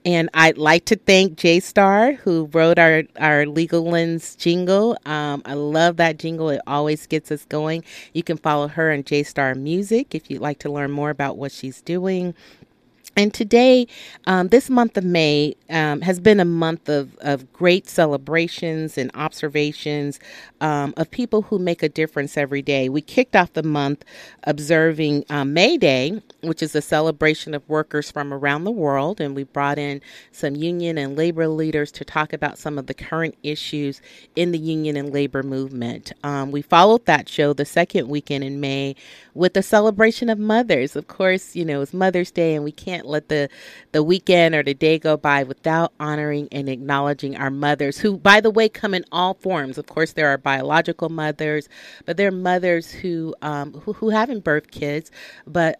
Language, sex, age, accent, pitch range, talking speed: English, female, 40-59, American, 145-180 Hz, 190 wpm